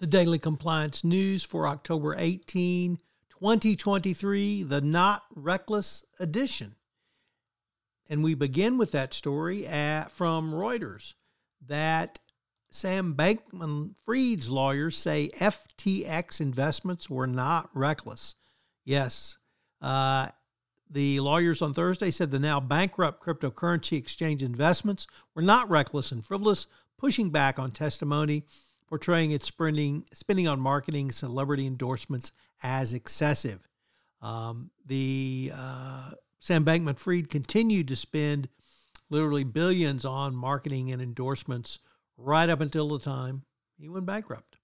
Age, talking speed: 50-69, 110 wpm